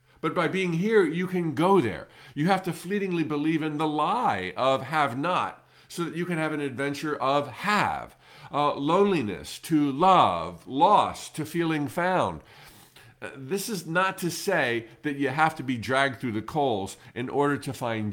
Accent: American